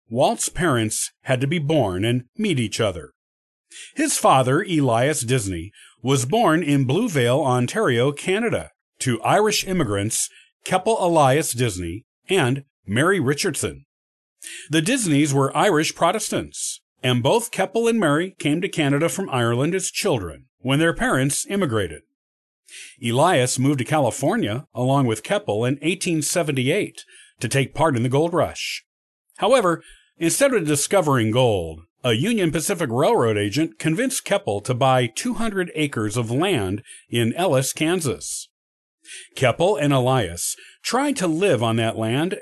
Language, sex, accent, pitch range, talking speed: English, male, American, 125-170 Hz, 135 wpm